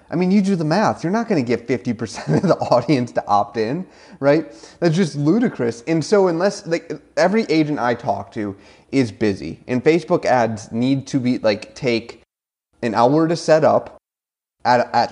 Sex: male